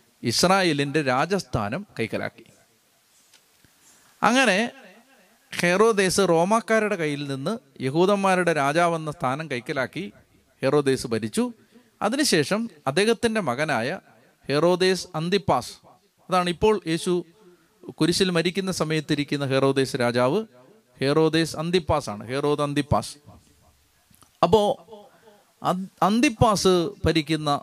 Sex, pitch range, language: male, 150-205 Hz, Malayalam